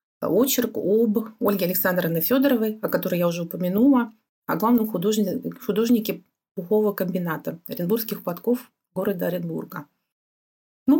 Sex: female